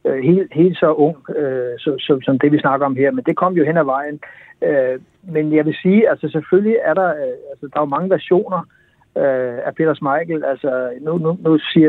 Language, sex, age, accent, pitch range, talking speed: Danish, male, 60-79, native, 140-175 Hz, 170 wpm